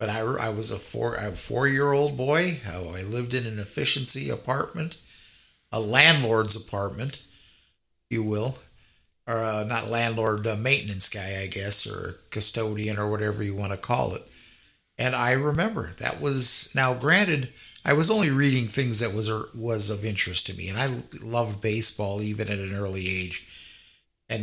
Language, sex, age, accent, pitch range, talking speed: English, male, 50-69, American, 105-130 Hz, 170 wpm